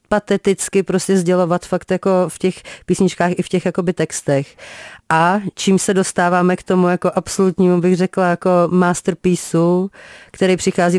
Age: 30-49